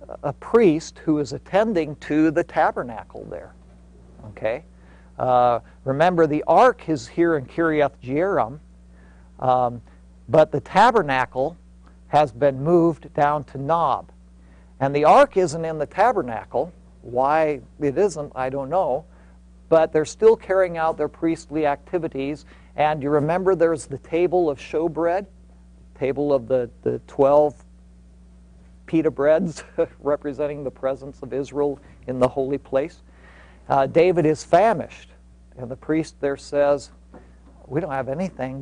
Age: 50-69